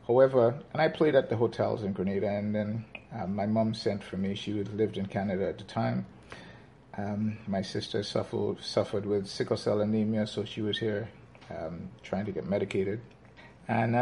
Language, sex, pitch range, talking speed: English, male, 100-125 Hz, 180 wpm